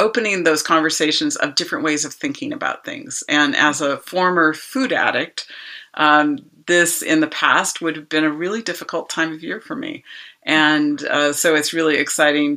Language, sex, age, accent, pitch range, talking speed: English, female, 40-59, American, 135-165 Hz, 180 wpm